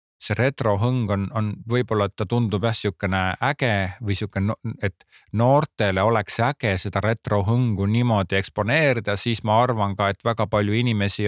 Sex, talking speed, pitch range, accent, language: male, 165 wpm, 100-125 Hz, Finnish, Czech